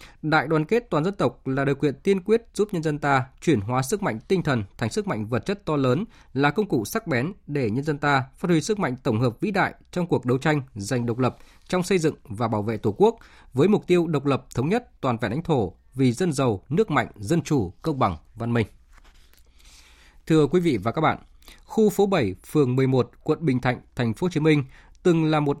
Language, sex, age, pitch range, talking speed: Vietnamese, male, 20-39, 120-160 Hz, 245 wpm